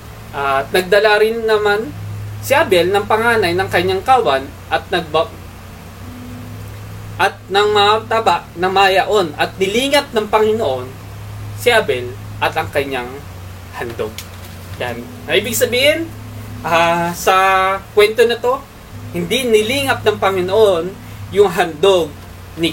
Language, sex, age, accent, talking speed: Filipino, male, 20-39, native, 115 wpm